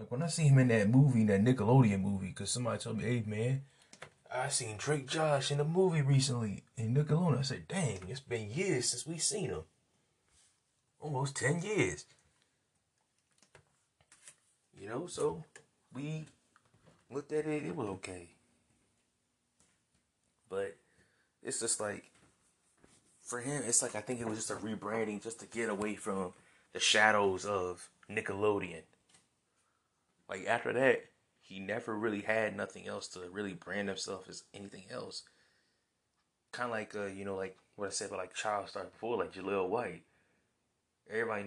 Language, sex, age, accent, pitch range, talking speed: English, male, 20-39, American, 100-135 Hz, 160 wpm